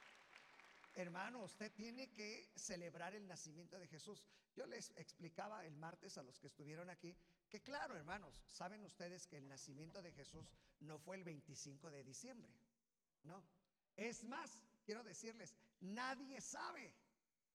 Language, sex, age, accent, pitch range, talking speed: Spanish, male, 50-69, Mexican, 170-235 Hz, 145 wpm